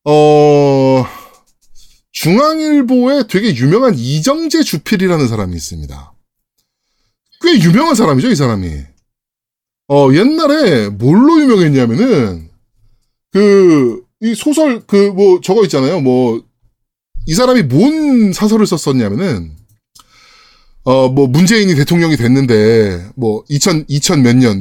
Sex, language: male, Korean